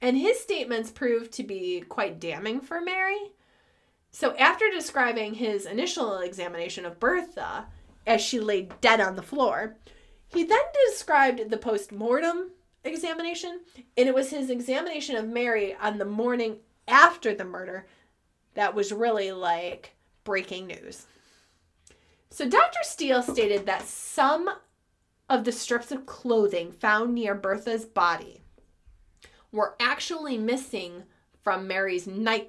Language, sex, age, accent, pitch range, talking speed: English, female, 20-39, American, 200-285 Hz, 135 wpm